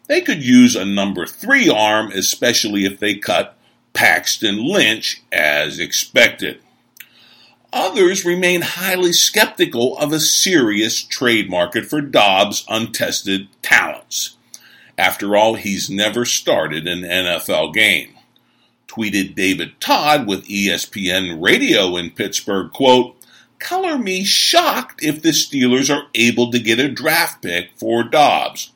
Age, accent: 50-69, American